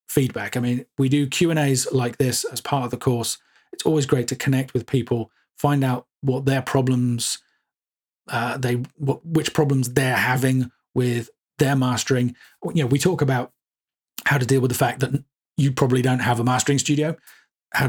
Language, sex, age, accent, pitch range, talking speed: English, male, 40-59, British, 125-145 Hz, 190 wpm